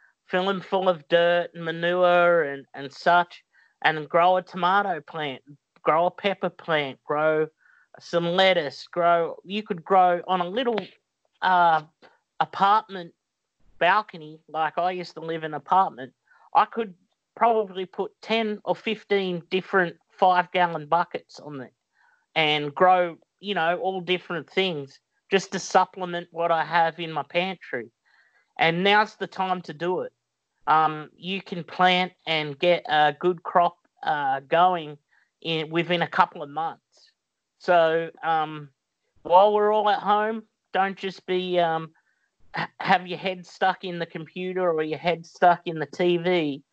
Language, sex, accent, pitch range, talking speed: English, male, Australian, 160-190 Hz, 150 wpm